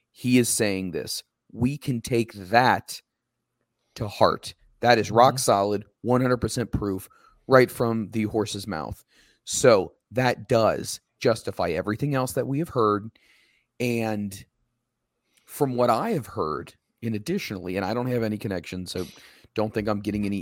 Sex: male